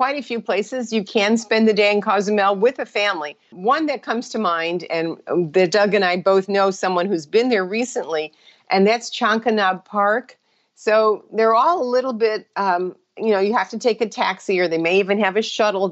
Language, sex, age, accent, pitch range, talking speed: English, female, 50-69, American, 185-225 Hz, 210 wpm